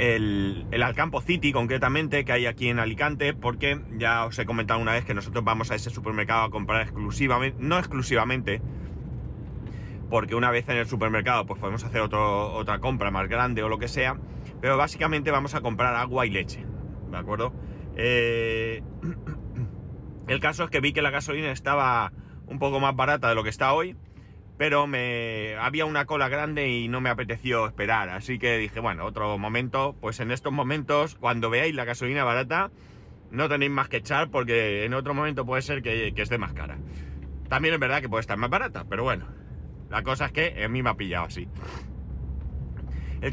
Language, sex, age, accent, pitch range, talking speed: Spanish, male, 30-49, Spanish, 110-140 Hz, 190 wpm